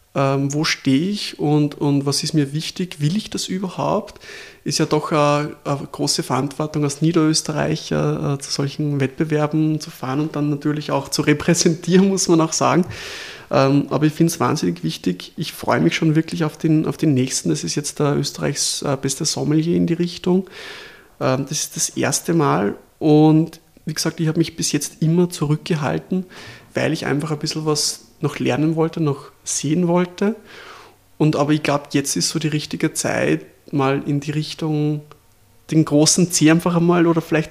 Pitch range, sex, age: 145-165 Hz, male, 20-39